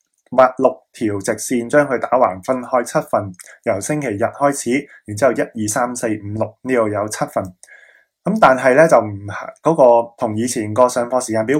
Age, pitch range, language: 20-39, 105-135 Hz, Chinese